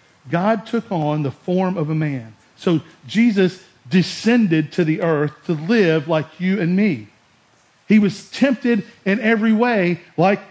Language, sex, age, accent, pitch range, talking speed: English, male, 50-69, American, 140-190 Hz, 155 wpm